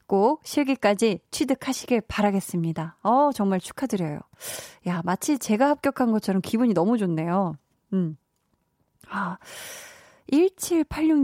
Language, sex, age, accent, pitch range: Korean, female, 20-39, native, 190-270 Hz